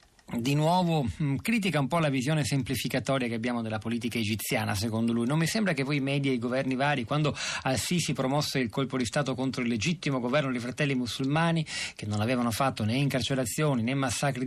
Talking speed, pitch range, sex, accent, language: 195 wpm, 115-135 Hz, male, native, Italian